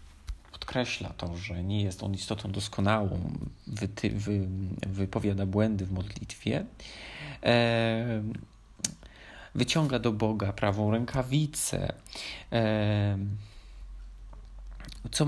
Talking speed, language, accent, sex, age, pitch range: 70 wpm, Polish, native, male, 40-59, 100-120 Hz